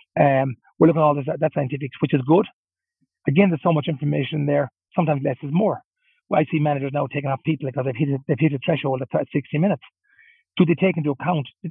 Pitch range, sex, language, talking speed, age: 140-175 Hz, male, English, 240 wpm, 30-49